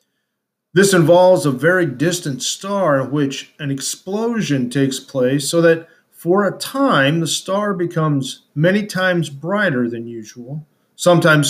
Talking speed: 135 wpm